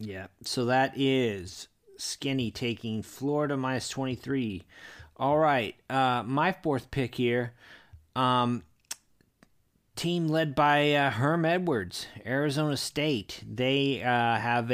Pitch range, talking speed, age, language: 110-135 Hz, 115 wpm, 30-49, English